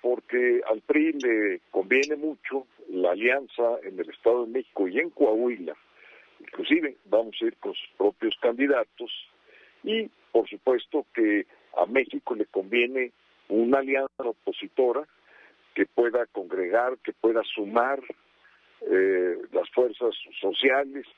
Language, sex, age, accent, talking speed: Spanish, male, 50-69, Mexican, 130 wpm